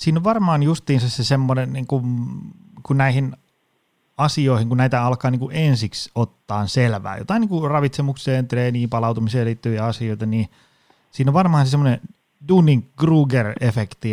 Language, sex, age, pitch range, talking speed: Finnish, male, 30-49, 110-135 Hz, 135 wpm